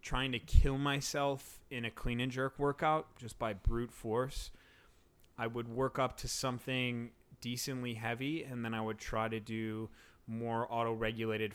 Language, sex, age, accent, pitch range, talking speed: English, male, 30-49, American, 110-130 Hz, 160 wpm